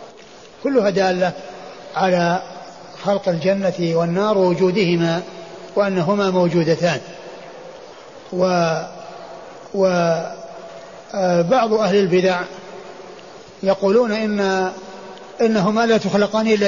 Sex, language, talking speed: male, Arabic, 70 wpm